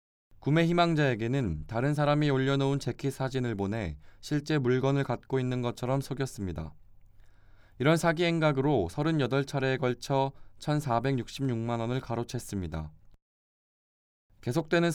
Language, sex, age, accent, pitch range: Korean, male, 20-39, native, 105-140 Hz